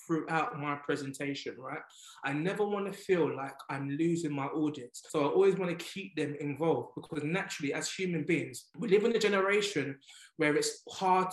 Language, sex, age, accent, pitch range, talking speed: English, male, 20-39, British, 150-185 Hz, 185 wpm